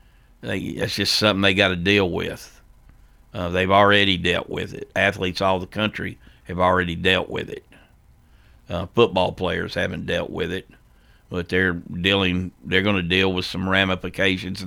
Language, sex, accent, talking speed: English, male, American, 170 wpm